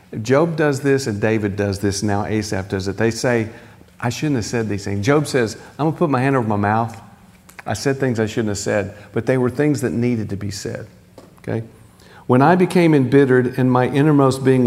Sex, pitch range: male, 100-120 Hz